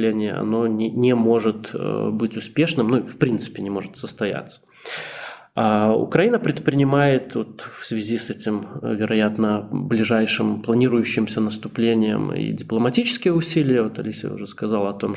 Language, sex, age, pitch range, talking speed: Russian, male, 20-39, 110-130 Hz, 120 wpm